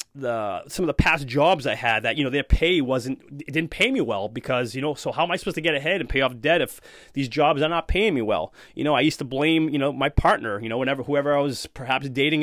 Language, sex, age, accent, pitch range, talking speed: English, male, 30-49, American, 135-160 Hz, 290 wpm